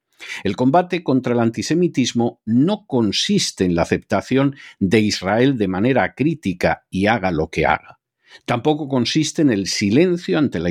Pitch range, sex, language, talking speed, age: 100-150 Hz, male, Spanish, 150 wpm, 50-69